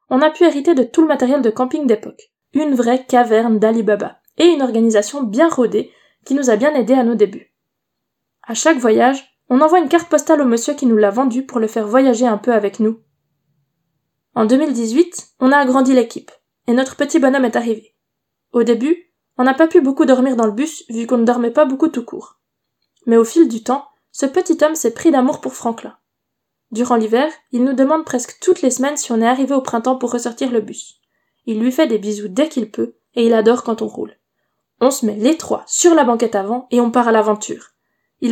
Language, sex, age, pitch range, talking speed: French, female, 20-39, 230-280 Hz, 225 wpm